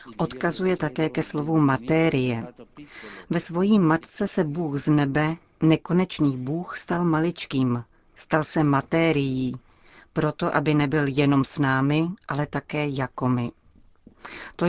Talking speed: 125 wpm